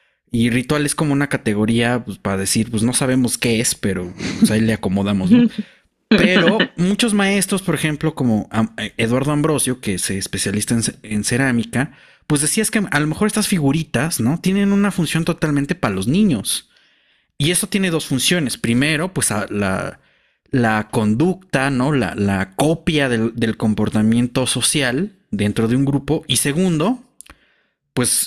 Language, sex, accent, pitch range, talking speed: Spanish, male, Mexican, 115-165 Hz, 155 wpm